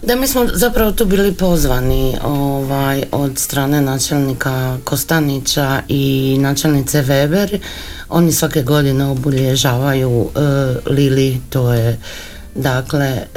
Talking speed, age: 110 wpm, 50-69